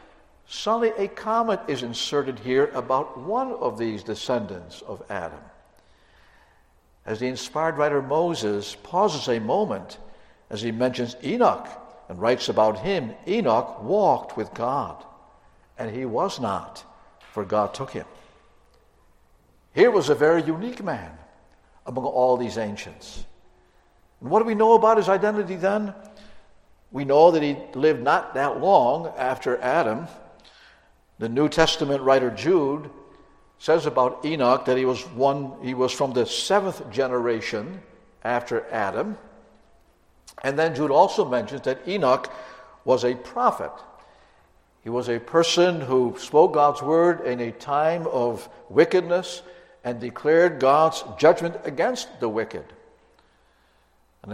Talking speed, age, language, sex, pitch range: 135 wpm, 60-79, English, male, 120-165 Hz